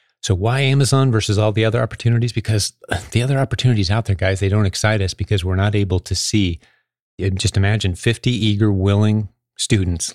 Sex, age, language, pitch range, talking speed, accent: male, 30-49, English, 95-115 Hz, 185 wpm, American